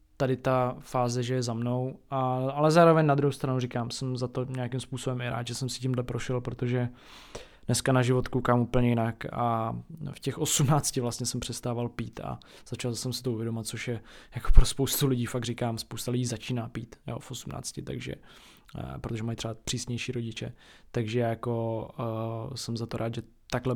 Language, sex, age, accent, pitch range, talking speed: Czech, male, 20-39, native, 120-135 Hz, 195 wpm